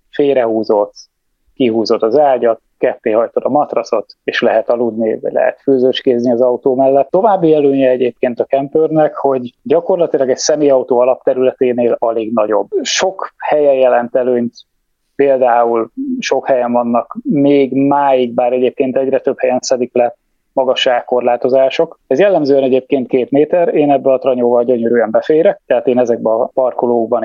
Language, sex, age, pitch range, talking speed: Hungarian, male, 30-49, 120-145 Hz, 140 wpm